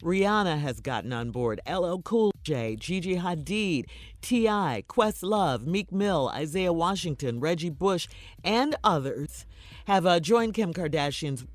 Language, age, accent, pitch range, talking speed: English, 50-69, American, 145-200 Hz, 130 wpm